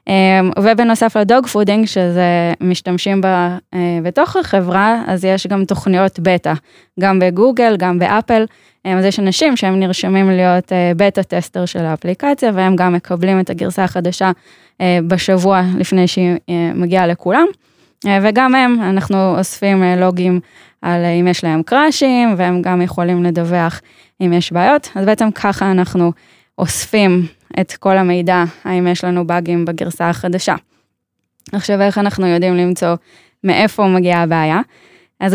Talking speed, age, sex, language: 130 wpm, 10-29, female, Hebrew